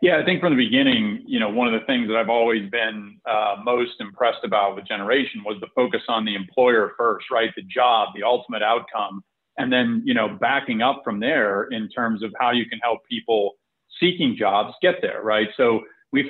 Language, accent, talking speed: English, American, 215 wpm